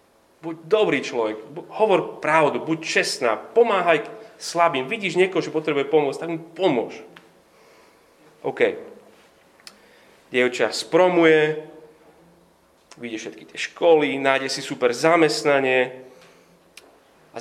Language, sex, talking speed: Slovak, male, 105 wpm